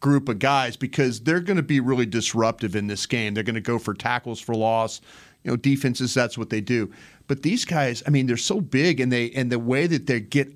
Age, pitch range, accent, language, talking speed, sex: 40-59, 115-135 Hz, American, English, 250 wpm, male